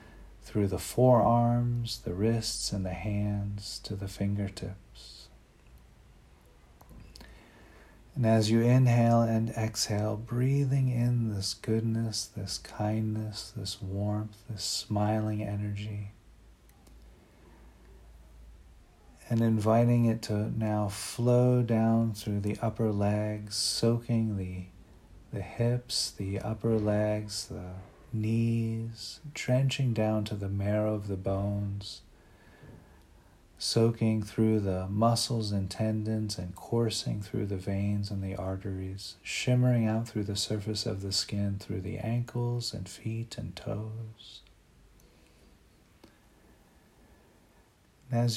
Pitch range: 100-115 Hz